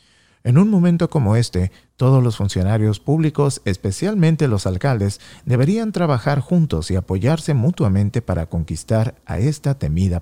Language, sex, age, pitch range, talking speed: English, male, 50-69, 95-145 Hz, 135 wpm